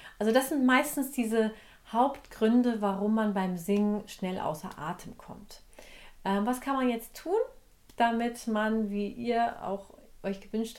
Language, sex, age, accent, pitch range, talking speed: German, female, 40-59, German, 185-235 Hz, 150 wpm